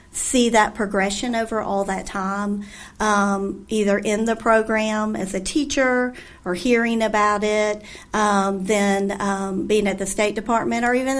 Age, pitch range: 40-59, 205-250 Hz